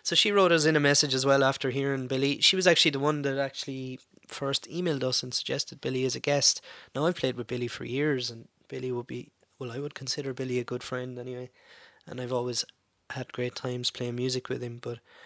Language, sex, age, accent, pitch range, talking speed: English, male, 20-39, Irish, 130-155 Hz, 230 wpm